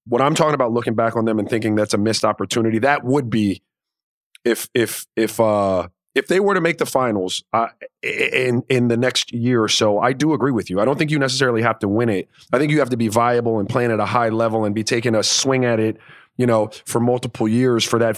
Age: 30-49